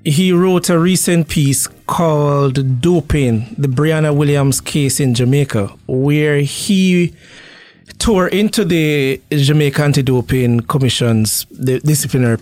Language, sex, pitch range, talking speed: English, male, 130-160 Hz, 105 wpm